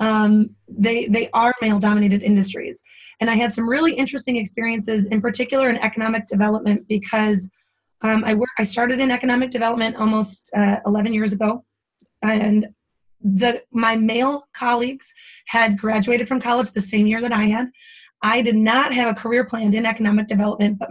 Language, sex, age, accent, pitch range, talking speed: English, female, 20-39, American, 215-260 Hz, 170 wpm